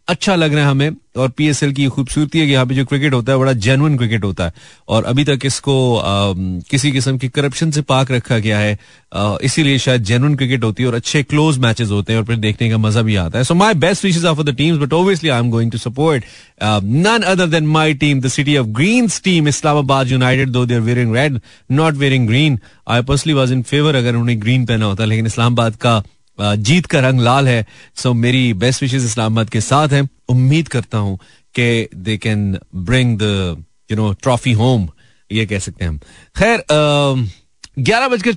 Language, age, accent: Hindi, 30-49, native